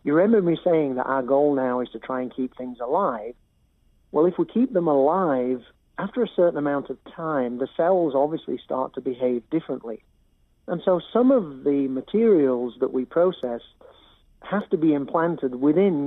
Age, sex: 60-79, male